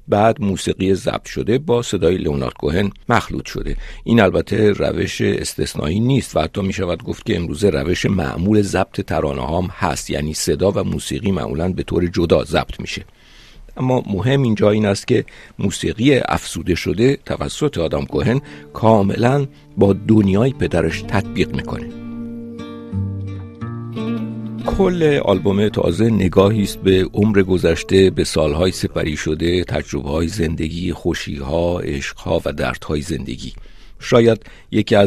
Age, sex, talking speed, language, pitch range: 50-69, male, 130 wpm, Persian, 80-110 Hz